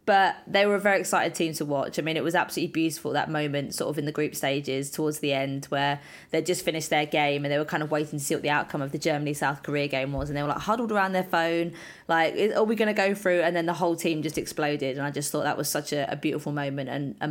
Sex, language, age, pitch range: female, English, 20-39, 150-200 Hz